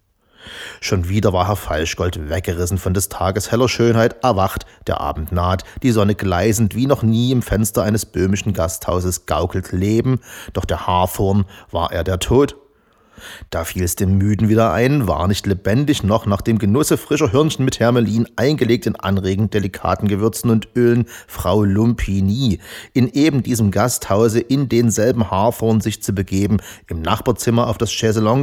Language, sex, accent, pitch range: German, male, German, 95-120 Hz